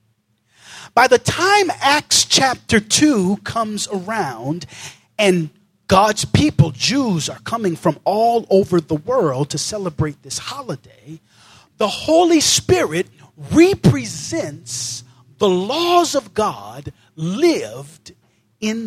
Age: 40-59